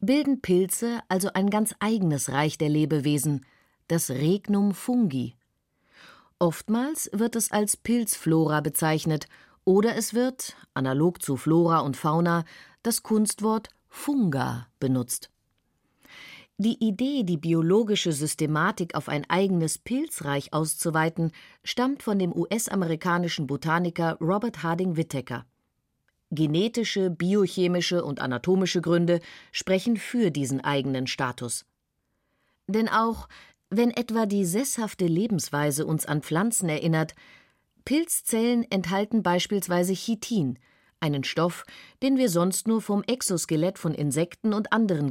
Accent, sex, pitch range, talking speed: German, female, 155-220 Hz, 115 wpm